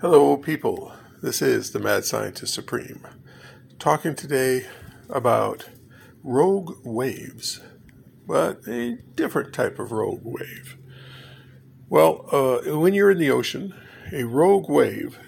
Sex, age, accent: male, 50-69, American